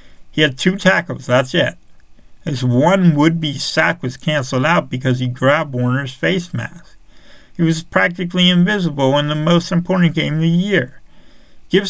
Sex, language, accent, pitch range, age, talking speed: male, English, American, 130-170 Hz, 50-69, 165 wpm